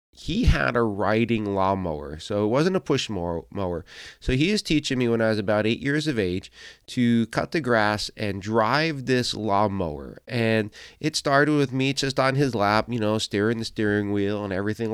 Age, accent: 30-49, American